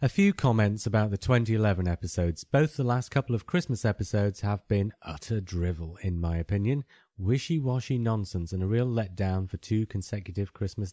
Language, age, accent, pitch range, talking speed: English, 30-49, British, 95-120 Hz, 170 wpm